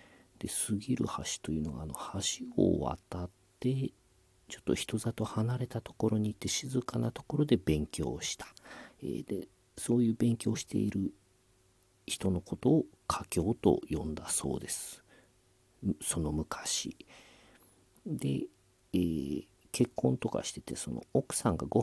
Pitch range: 85-110 Hz